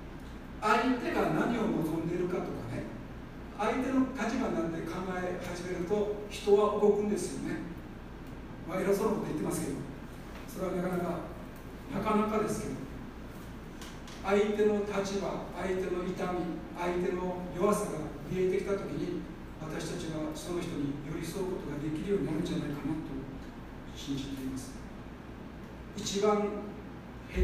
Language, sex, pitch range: Japanese, male, 165-200 Hz